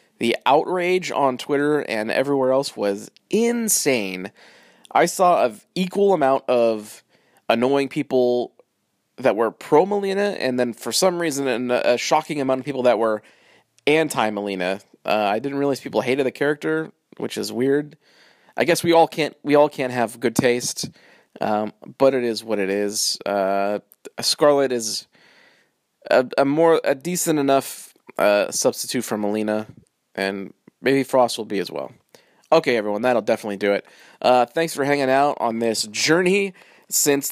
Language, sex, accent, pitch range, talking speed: English, male, American, 110-165 Hz, 160 wpm